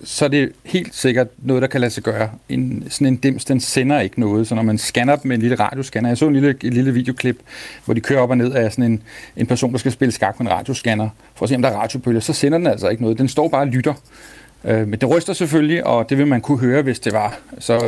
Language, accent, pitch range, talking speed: Danish, native, 120-145 Hz, 285 wpm